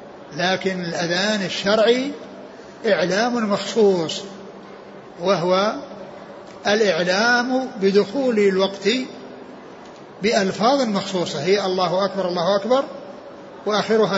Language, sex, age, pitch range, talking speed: Arabic, male, 60-79, 185-215 Hz, 70 wpm